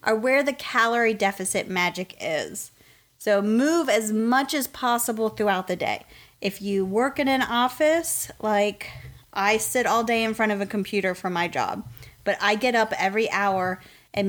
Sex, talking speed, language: female, 175 wpm, English